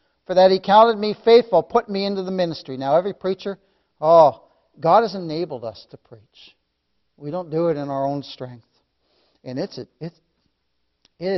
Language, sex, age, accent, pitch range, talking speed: English, male, 60-79, American, 130-195 Hz, 180 wpm